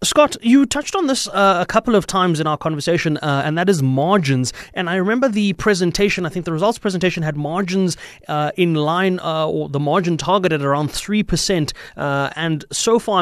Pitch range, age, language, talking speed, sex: 140-175 Hz, 30-49, English, 200 wpm, male